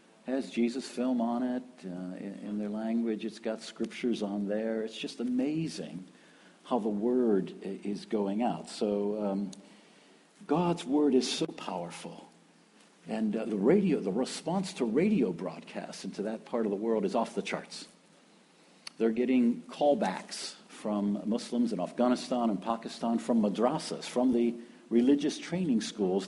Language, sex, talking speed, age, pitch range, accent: English, male, 150 wpm, 50-69, 105-140 Hz, American